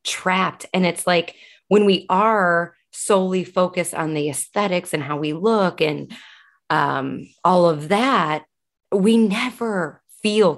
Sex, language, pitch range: female, English, 155-195 Hz